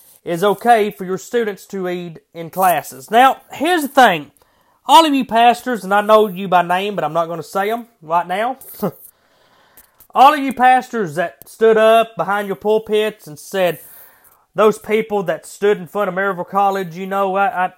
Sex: male